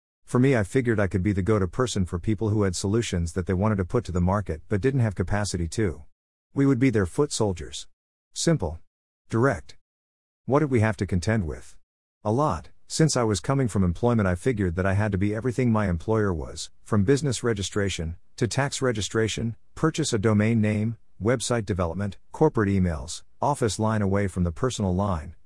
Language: English